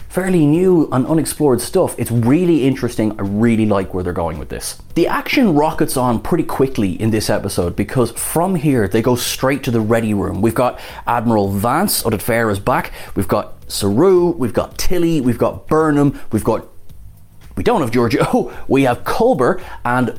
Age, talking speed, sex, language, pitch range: 30-49, 185 wpm, male, English, 100-135 Hz